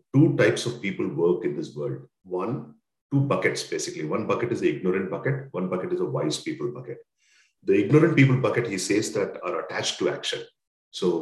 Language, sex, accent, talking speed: English, male, Indian, 200 wpm